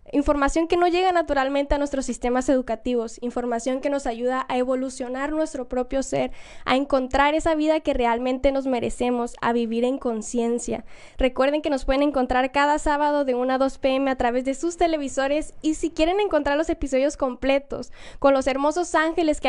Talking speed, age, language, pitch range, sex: 180 wpm, 10-29, Spanish, 255-300 Hz, female